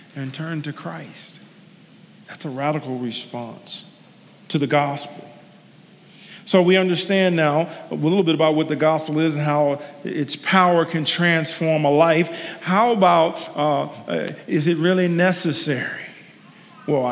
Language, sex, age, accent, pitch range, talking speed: English, male, 40-59, American, 150-195 Hz, 140 wpm